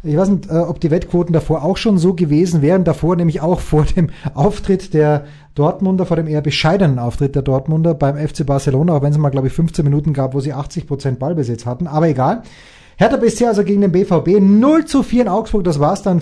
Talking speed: 225 wpm